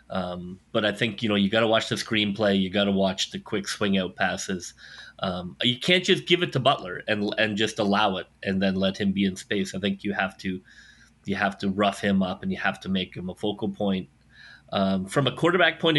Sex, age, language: male, 30-49, English